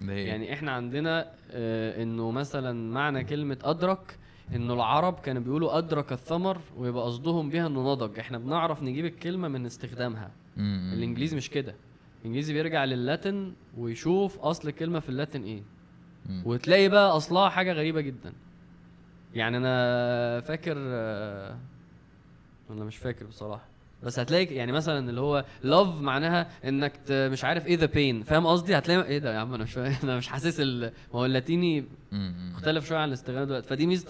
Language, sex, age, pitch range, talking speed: Arabic, male, 20-39, 120-155 Hz, 160 wpm